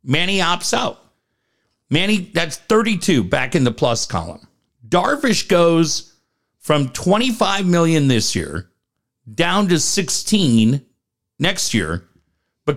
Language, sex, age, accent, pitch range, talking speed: English, male, 50-69, American, 120-170 Hz, 115 wpm